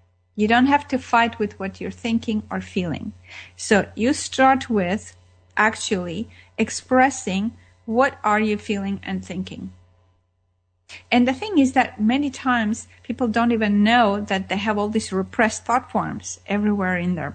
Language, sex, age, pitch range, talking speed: English, female, 40-59, 185-235 Hz, 155 wpm